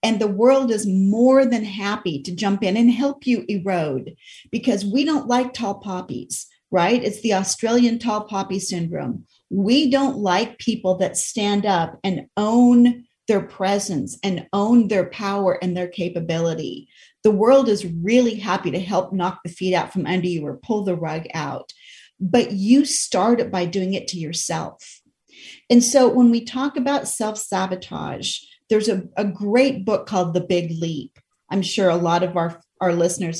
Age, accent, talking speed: 40-59, American, 175 wpm